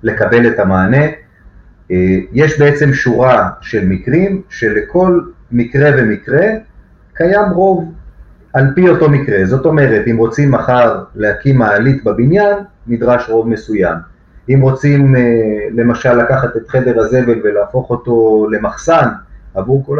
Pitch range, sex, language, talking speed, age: 105-140 Hz, male, Hebrew, 120 wpm, 30-49